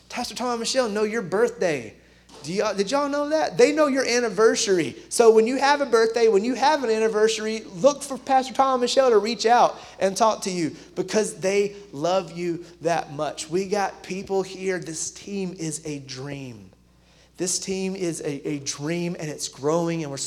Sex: male